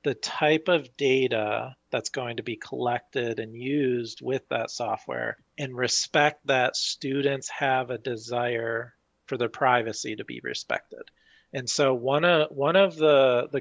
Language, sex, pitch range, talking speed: English, male, 120-145 Hz, 155 wpm